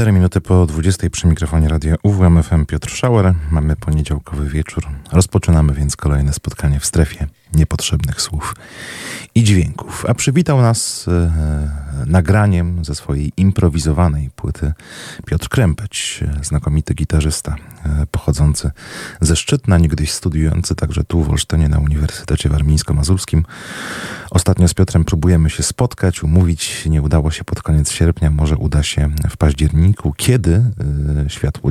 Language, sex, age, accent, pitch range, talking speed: Polish, male, 30-49, native, 75-95 Hz, 130 wpm